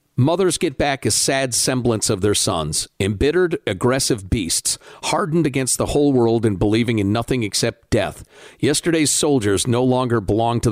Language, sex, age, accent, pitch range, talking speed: English, male, 50-69, American, 105-135 Hz, 160 wpm